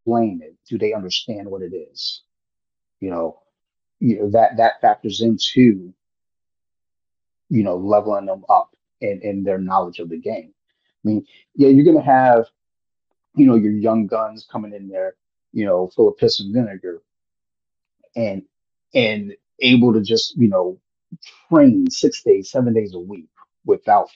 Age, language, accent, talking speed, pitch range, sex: 30-49, English, American, 155 wpm, 95-140 Hz, male